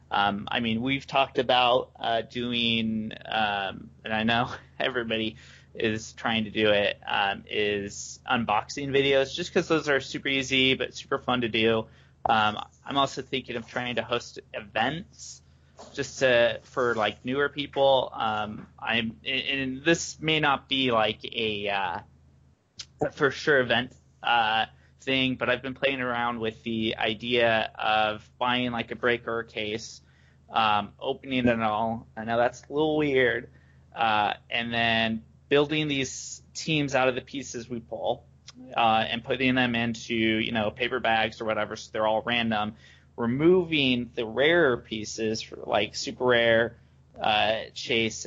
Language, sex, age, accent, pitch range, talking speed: English, male, 20-39, American, 110-130 Hz, 155 wpm